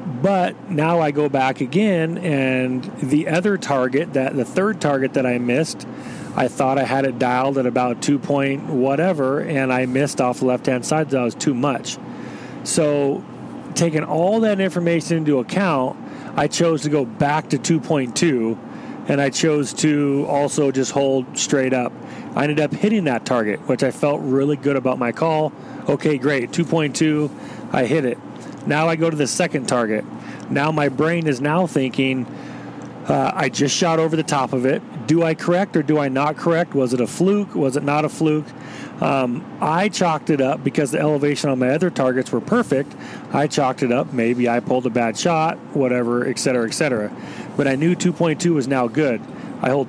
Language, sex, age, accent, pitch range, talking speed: English, male, 40-59, American, 130-160 Hz, 190 wpm